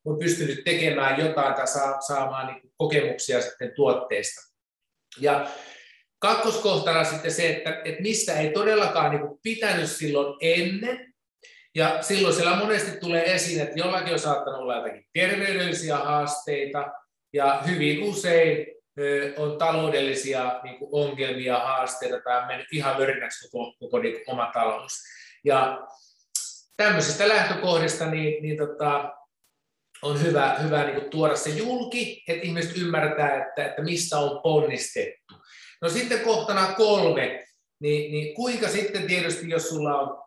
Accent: native